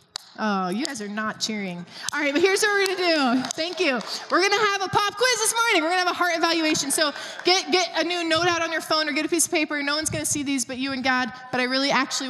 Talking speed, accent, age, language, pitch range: 305 wpm, American, 20-39, English, 205-310 Hz